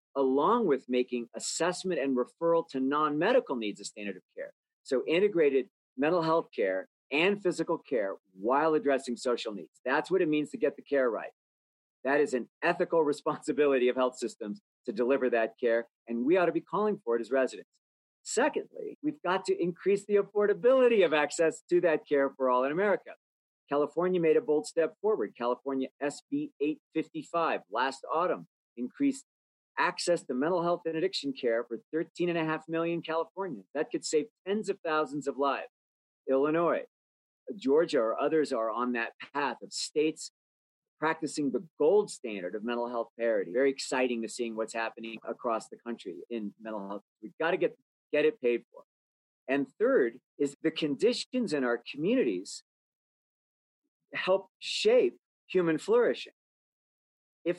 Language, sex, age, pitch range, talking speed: English, male, 40-59, 125-185 Hz, 165 wpm